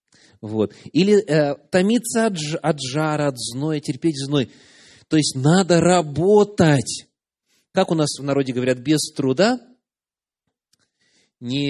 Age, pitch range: 30-49, 125-185 Hz